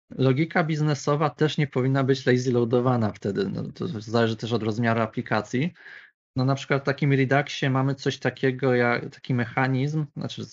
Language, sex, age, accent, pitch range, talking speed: Polish, male, 20-39, native, 115-135 Hz, 165 wpm